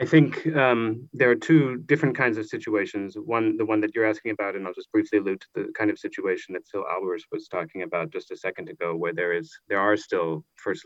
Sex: male